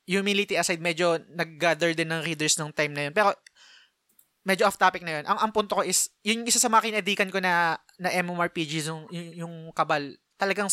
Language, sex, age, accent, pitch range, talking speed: Filipino, male, 20-39, native, 155-175 Hz, 195 wpm